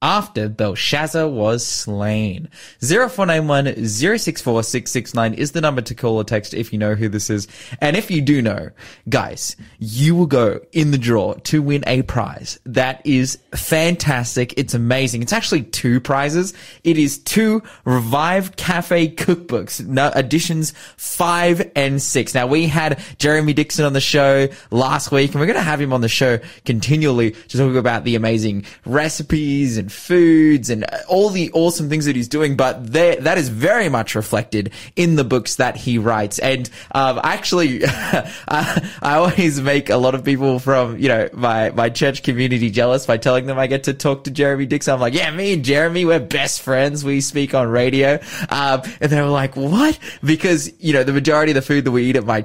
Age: 20-39